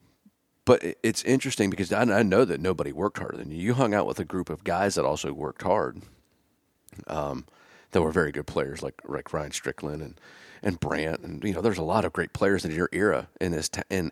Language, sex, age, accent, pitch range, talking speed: English, male, 40-59, American, 80-100 Hz, 230 wpm